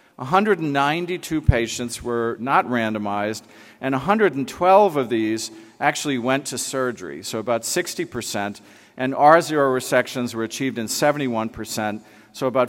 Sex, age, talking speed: male, 40-59, 120 wpm